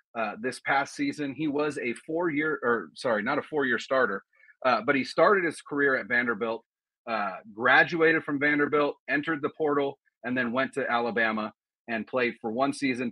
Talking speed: 190 wpm